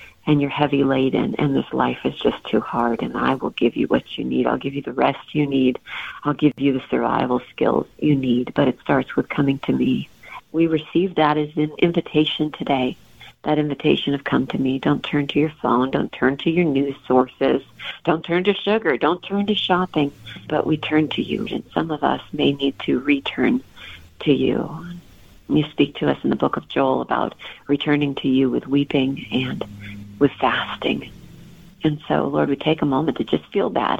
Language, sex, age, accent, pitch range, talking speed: English, female, 40-59, American, 135-160 Hz, 205 wpm